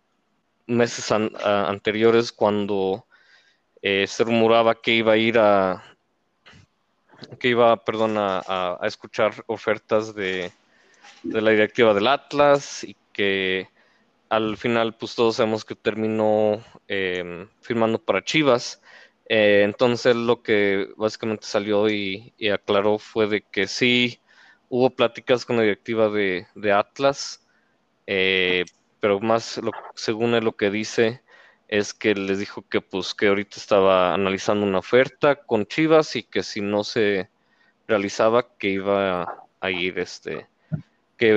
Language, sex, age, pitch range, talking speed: Spanish, male, 20-39, 100-120 Hz, 140 wpm